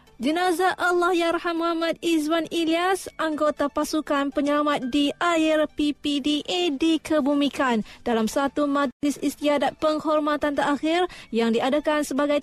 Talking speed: 105 wpm